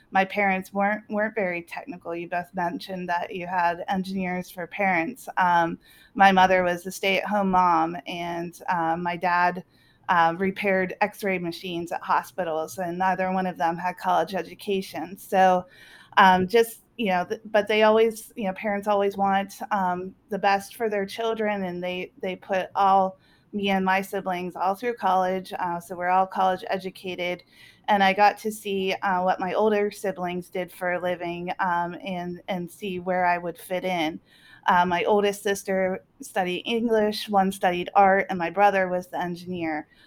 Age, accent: 30-49, American